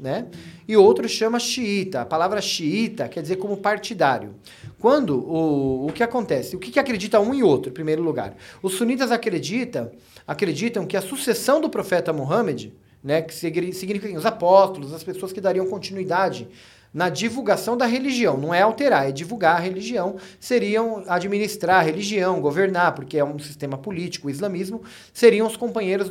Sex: male